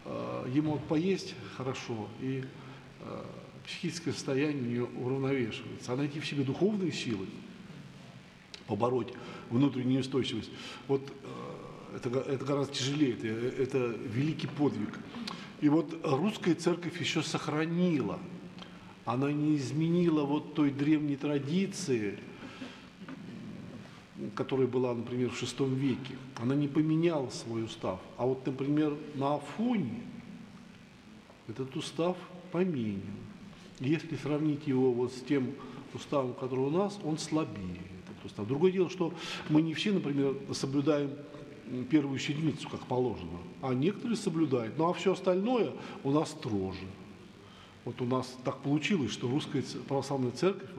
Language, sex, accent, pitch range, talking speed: Russian, male, native, 125-160 Hz, 130 wpm